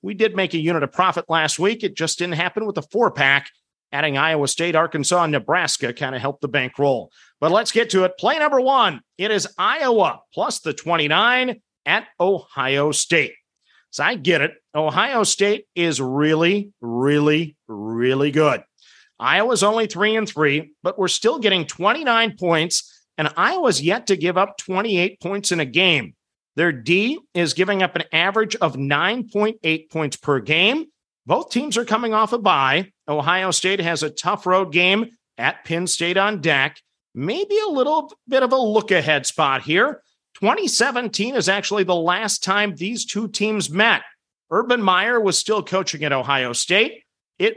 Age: 40-59